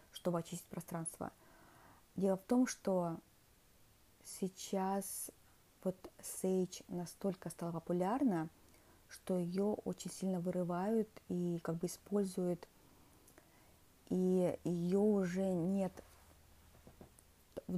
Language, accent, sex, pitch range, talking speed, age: Russian, native, female, 175-195 Hz, 90 wpm, 30-49